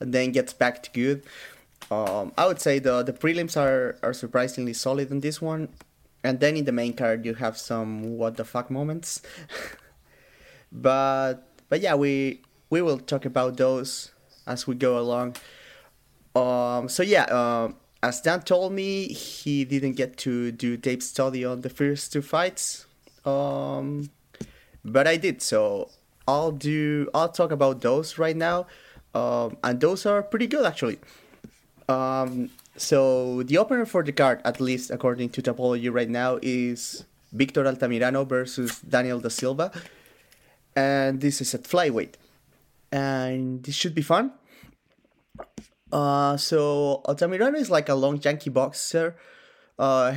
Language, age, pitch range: English, 30-49, 125-150 Hz